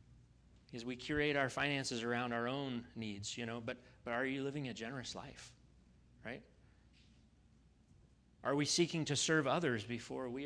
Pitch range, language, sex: 110-140 Hz, English, male